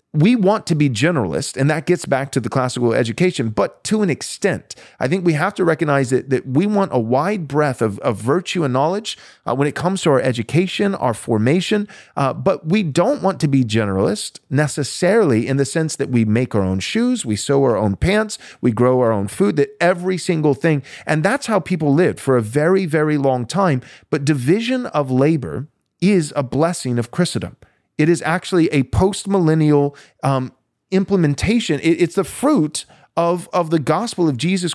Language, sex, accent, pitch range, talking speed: English, male, American, 130-180 Hz, 195 wpm